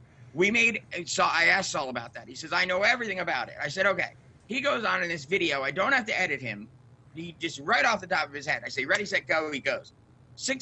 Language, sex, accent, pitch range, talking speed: English, male, American, 135-180 Hz, 260 wpm